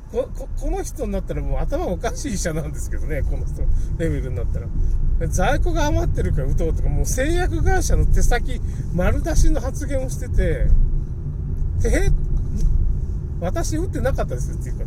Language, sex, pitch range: Japanese, male, 80-125 Hz